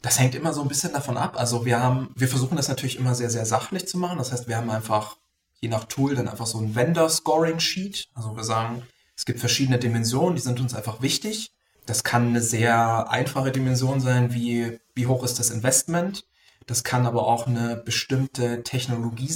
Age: 20-39